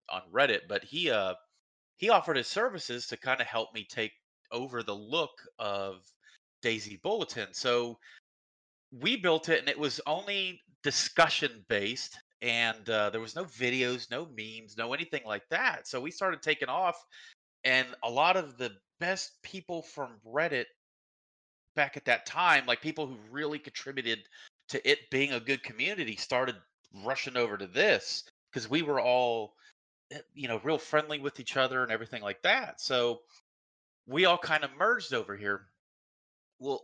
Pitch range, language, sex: 110-165 Hz, English, male